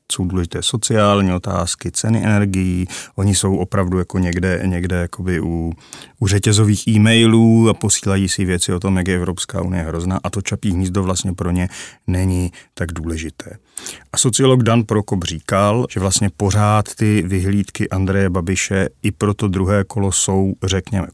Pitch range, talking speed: 95-115 Hz, 165 wpm